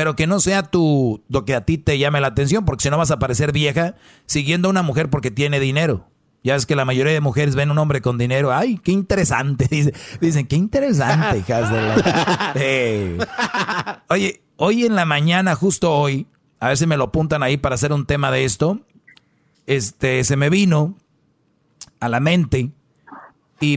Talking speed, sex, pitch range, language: 195 wpm, male, 130-165 Hz, Spanish